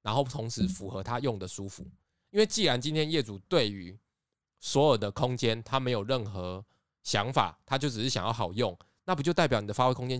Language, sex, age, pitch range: Chinese, male, 20-39, 100-130 Hz